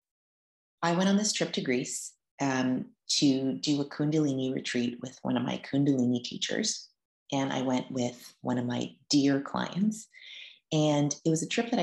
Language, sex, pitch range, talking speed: English, female, 125-160 Hz, 170 wpm